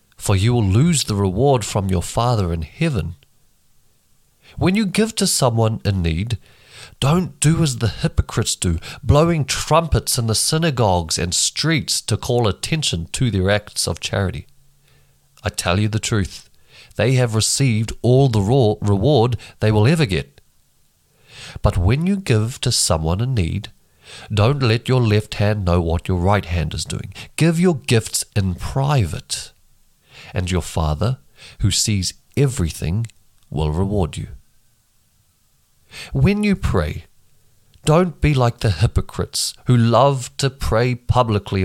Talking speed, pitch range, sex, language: 145 wpm, 95-135 Hz, male, English